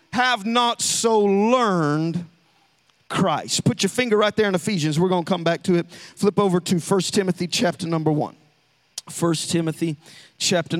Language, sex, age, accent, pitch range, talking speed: English, male, 40-59, American, 160-225 Hz, 165 wpm